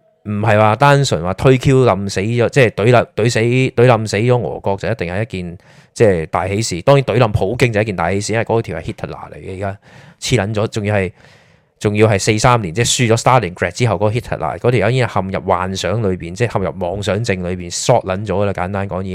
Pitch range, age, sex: 95-120 Hz, 20-39, male